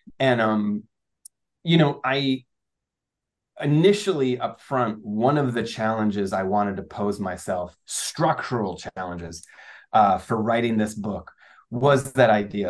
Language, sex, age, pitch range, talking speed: English, male, 30-49, 110-140 Hz, 130 wpm